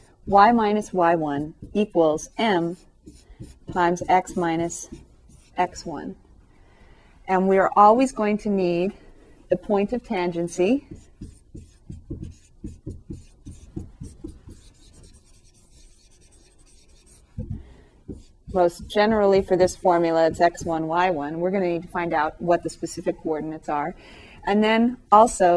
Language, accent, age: English, American, 30-49